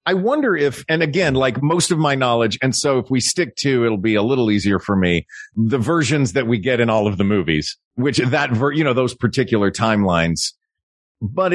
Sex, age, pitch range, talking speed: male, 40-59, 105-140 Hz, 220 wpm